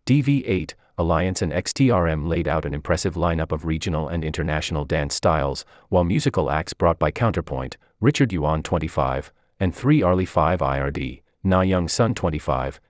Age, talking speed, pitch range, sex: 30-49, 155 wpm, 75-120 Hz, male